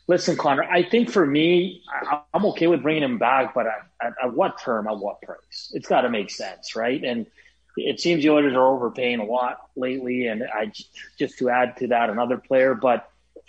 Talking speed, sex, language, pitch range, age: 210 wpm, male, English, 120-160 Hz, 30-49